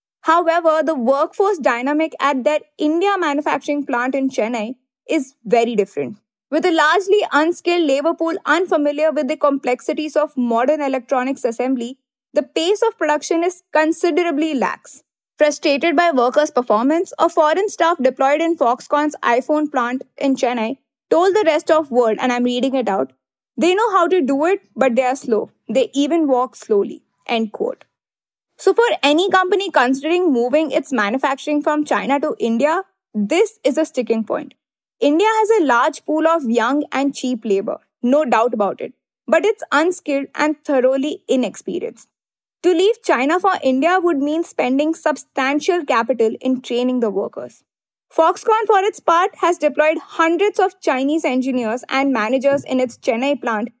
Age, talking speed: 20-39, 160 wpm